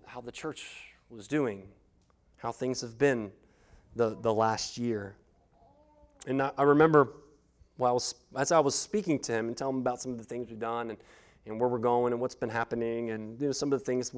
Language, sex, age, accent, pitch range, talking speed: English, male, 30-49, American, 125-195 Hz, 215 wpm